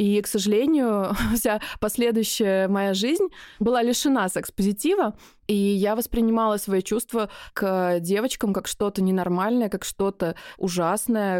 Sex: female